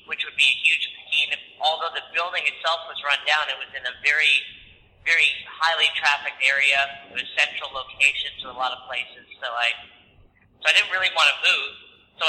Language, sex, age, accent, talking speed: English, male, 40-59, American, 200 wpm